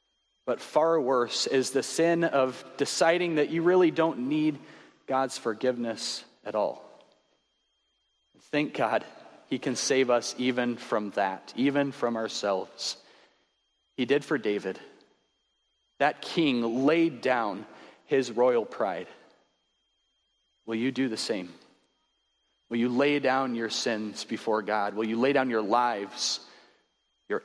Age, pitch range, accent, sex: 30-49, 120-160 Hz, American, male